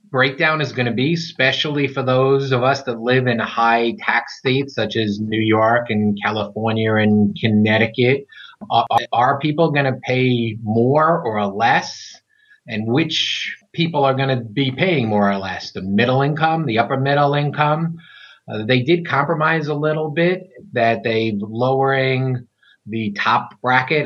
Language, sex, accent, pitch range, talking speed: English, male, American, 115-140 Hz, 160 wpm